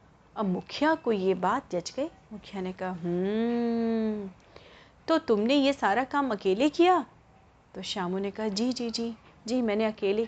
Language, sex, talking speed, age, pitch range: Hindi, female, 150 wpm, 30-49, 220-290 Hz